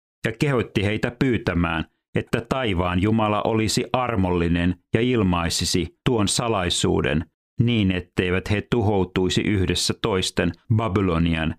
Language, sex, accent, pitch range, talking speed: Finnish, male, native, 90-110 Hz, 105 wpm